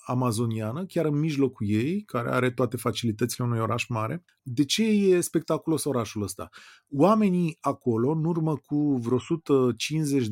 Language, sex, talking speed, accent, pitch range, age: Romanian, male, 145 wpm, native, 125-175 Hz, 30-49